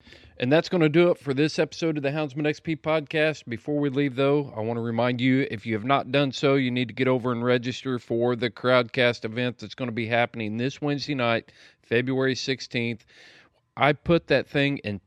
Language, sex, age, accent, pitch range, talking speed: English, male, 40-59, American, 105-135 Hz, 220 wpm